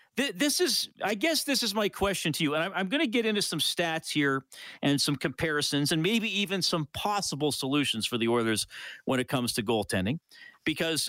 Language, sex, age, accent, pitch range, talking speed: English, male, 40-59, American, 140-185 Hz, 200 wpm